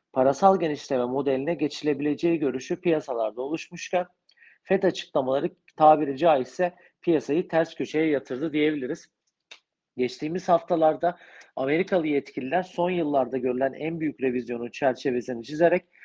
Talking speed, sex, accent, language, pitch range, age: 105 wpm, male, native, Turkish, 150-180 Hz, 40-59